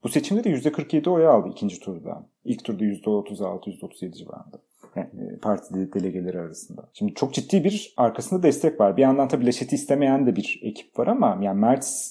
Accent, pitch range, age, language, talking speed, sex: native, 120-160 Hz, 40-59, Turkish, 170 wpm, male